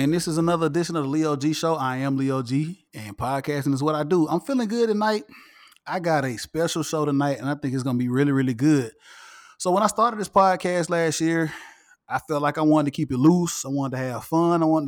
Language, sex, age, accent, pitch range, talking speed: English, male, 20-39, American, 145-175 Hz, 260 wpm